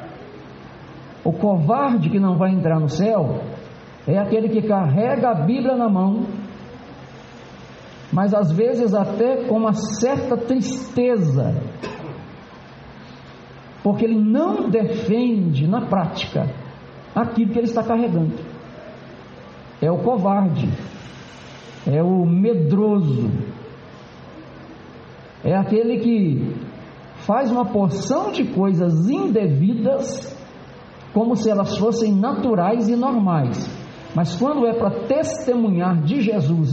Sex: male